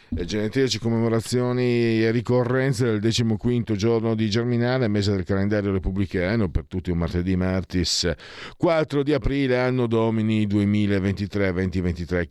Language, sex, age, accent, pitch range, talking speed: Italian, male, 50-69, native, 85-115 Hz, 125 wpm